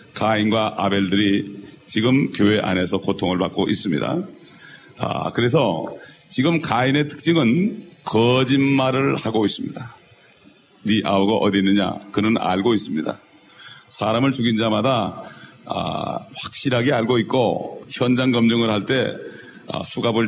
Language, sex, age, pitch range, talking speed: English, male, 40-59, 105-135 Hz, 100 wpm